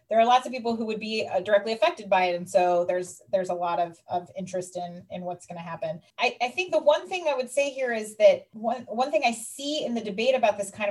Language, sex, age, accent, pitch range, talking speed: English, female, 30-49, American, 190-235 Hz, 275 wpm